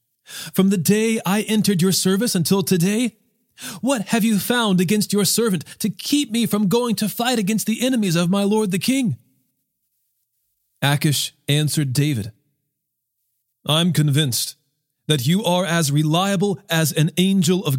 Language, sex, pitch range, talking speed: English, male, 130-190 Hz, 150 wpm